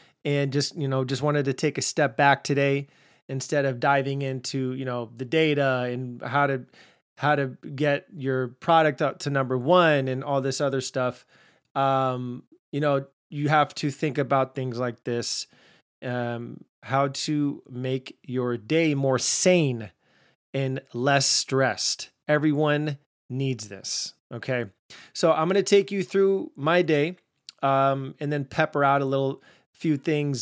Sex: male